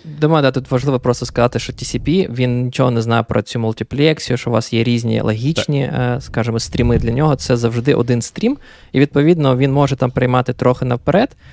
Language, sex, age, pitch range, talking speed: Ukrainian, male, 20-39, 115-145 Hz, 195 wpm